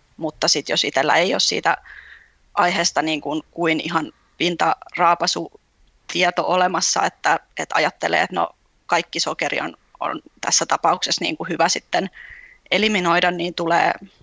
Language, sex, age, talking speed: Finnish, female, 20-39, 140 wpm